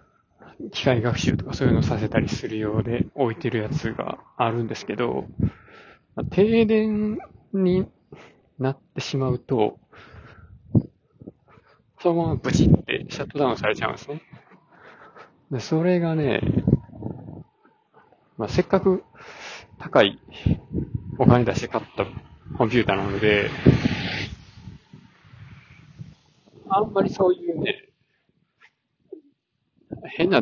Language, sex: Japanese, male